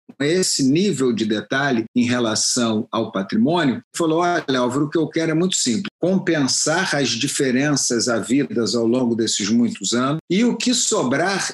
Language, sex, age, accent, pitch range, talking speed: Portuguese, male, 50-69, Brazilian, 125-185 Hz, 165 wpm